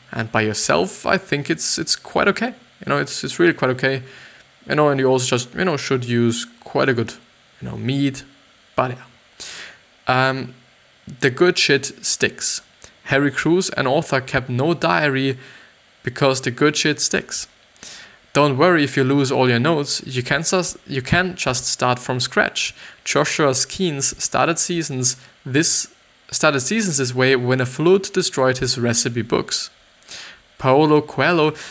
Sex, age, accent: male, 20-39, German